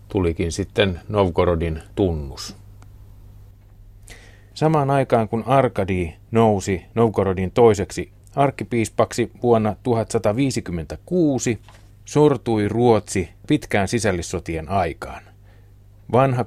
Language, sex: Finnish, male